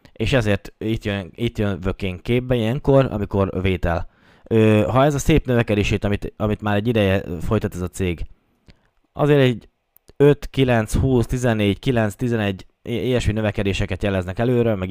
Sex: male